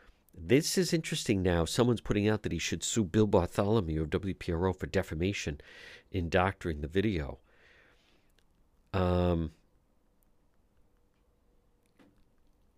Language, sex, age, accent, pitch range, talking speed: English, male, 50-69, American, 80-105 Hz, 110 wpm